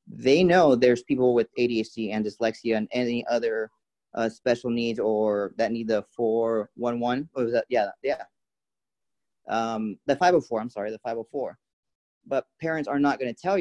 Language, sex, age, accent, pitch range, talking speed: English, male, 30-49, American, 120-145 Hz, 185 wpm